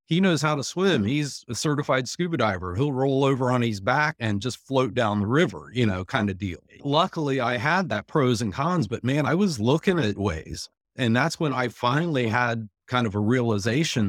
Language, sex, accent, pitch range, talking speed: English, male, American, 100-135 Hz, 215 wpm